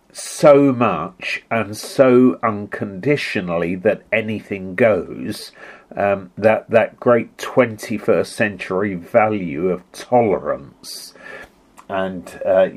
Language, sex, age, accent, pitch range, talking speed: English, male, 50-69, British, 90-125 Hz, 90 wpm